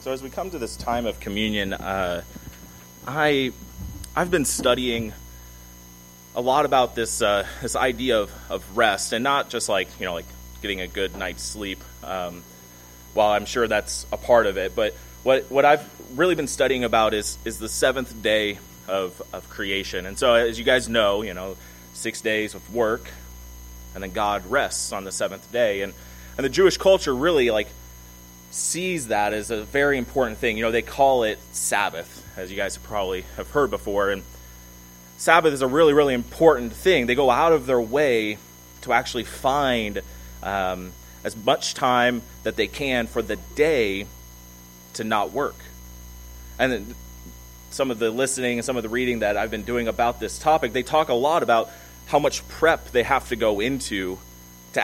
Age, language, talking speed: 30-49, English, 185 wpm